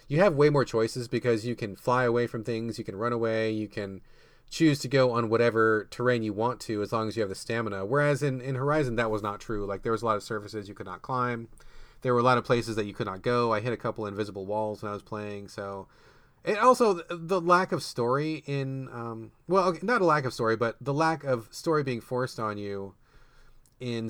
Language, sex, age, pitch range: English, male, 30-49, 110-155 Hz